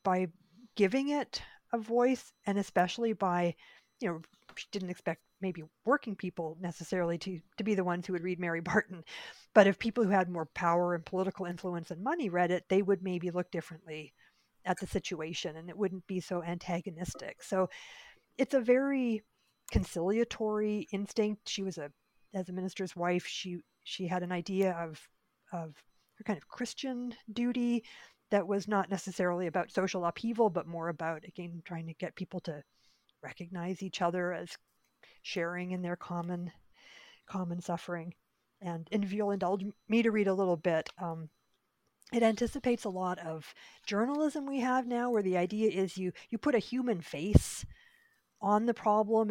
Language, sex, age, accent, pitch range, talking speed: English, female, 50-69, American, 175-215 Hz, 170 wpm